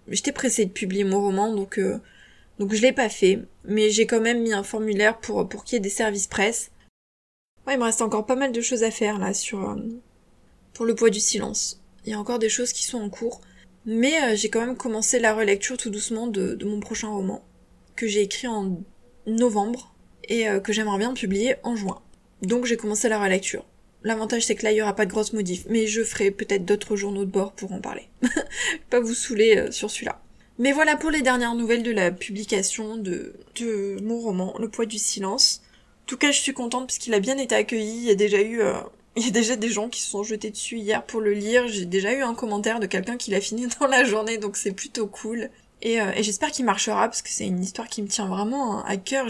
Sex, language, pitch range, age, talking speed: female, French, 205-240 Hz, 20-39, 245 wpm